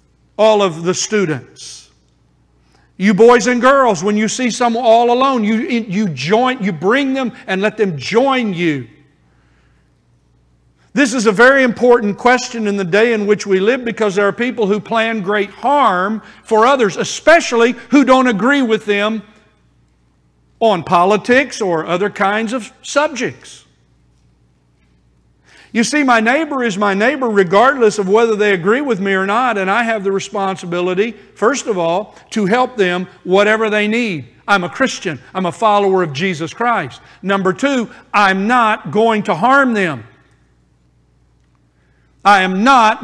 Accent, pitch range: American, 170-230 Hz